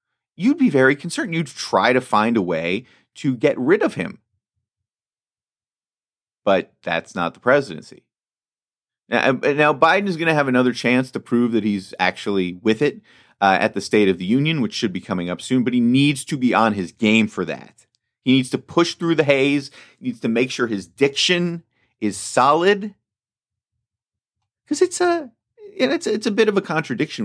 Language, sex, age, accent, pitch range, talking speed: English, male, 30-49, American, 100-165 Hz, 180 wpm